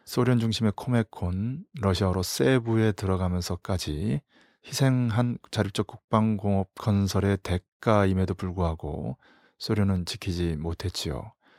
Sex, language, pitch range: male, Korean, 95-115 Hz